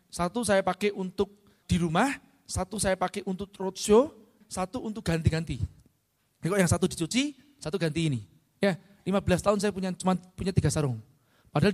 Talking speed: 160 wpm